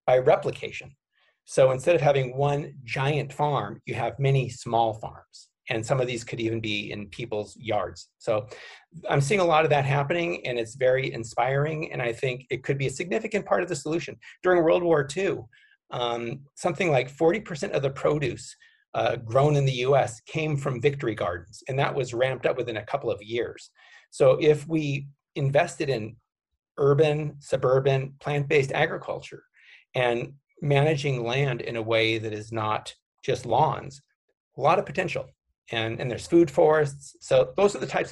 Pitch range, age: 115-150 Hz, 40-59